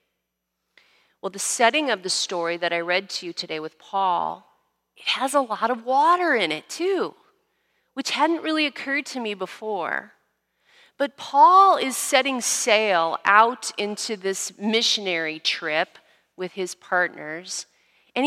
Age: 40-59